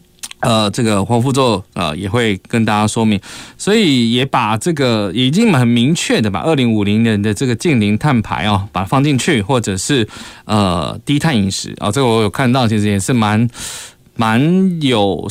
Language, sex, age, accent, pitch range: Chinese, male, 20-39, native, 105-140 Hz